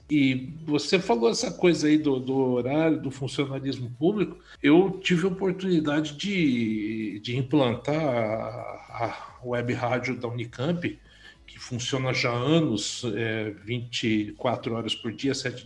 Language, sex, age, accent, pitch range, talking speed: Portuguese, male, 60-79, Brazilian, 125-155 Hz, 135 wpm